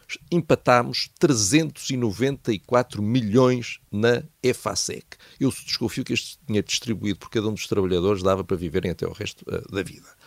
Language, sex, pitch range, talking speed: Portuguese, male, 105-160 Hz, 145 wpm